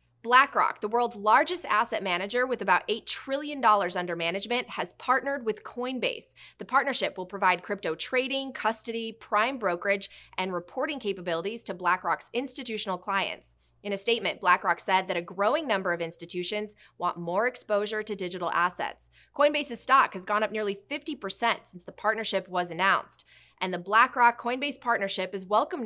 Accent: American